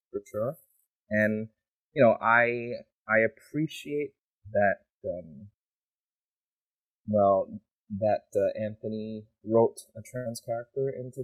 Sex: male